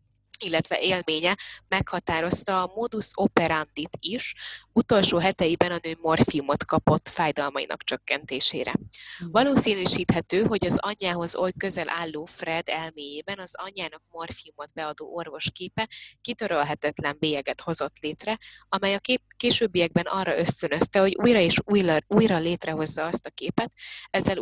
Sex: female